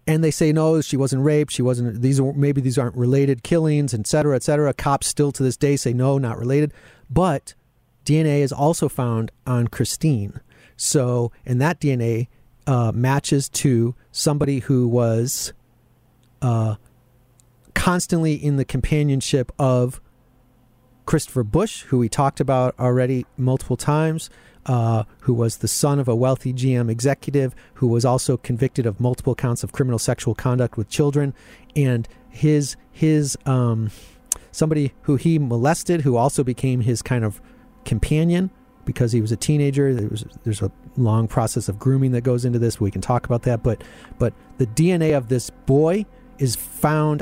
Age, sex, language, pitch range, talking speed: 40-59, male, English, 120-145 Hz, 165 wpm